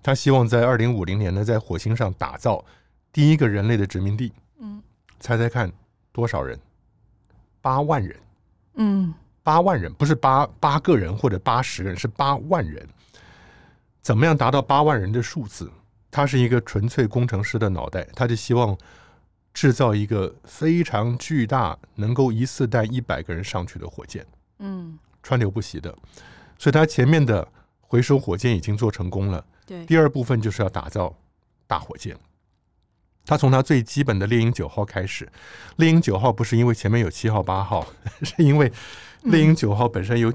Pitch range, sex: 100-135 Hz, male